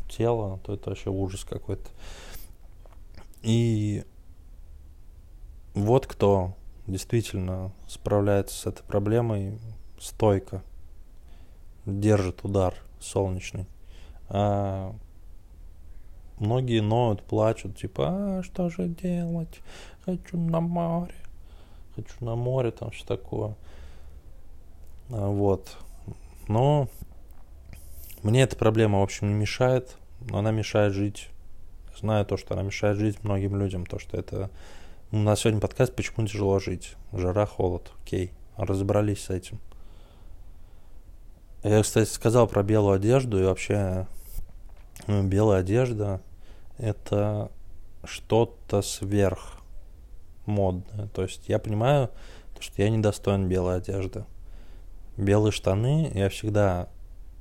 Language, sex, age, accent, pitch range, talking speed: Russian, male, 20-39, native, 85-105 Hz, 110 wpm